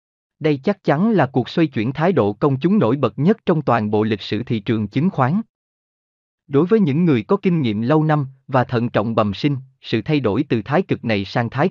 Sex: male